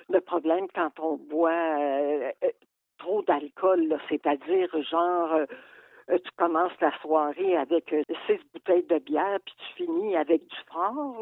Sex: female